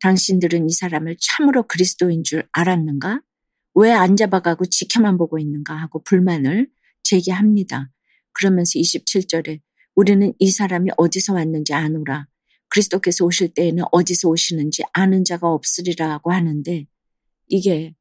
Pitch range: 160-195 Hz